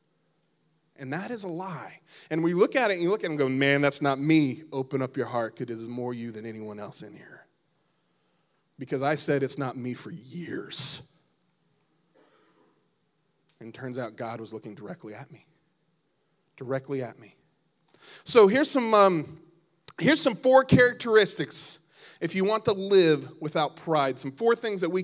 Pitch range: 140-195 Hz